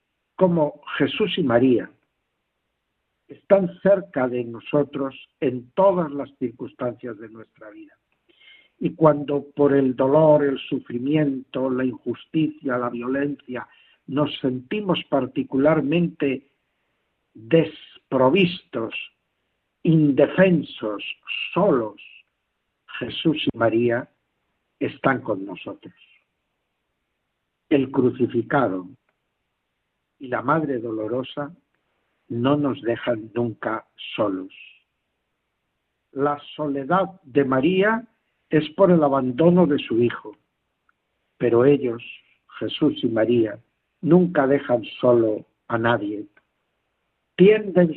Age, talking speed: 60-79, 90 wpm